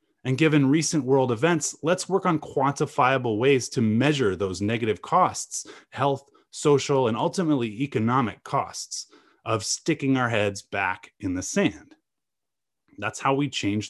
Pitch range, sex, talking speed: 100-140 Hz, male, 145 wpm